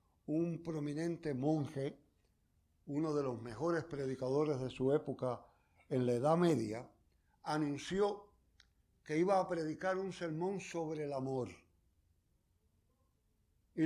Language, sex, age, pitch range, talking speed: Spanish, male, 60-79, 105-170 Hz, 115 wpm